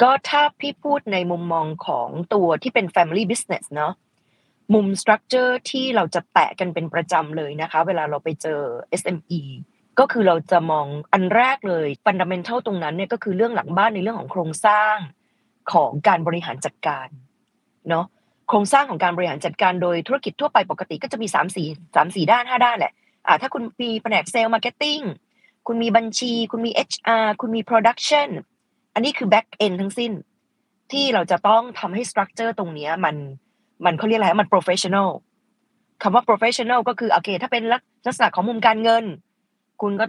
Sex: female